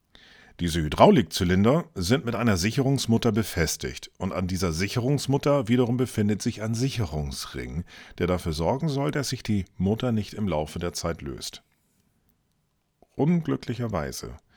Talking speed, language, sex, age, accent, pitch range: 130 wpm, German, male, 40-59, German, 95-130 Hz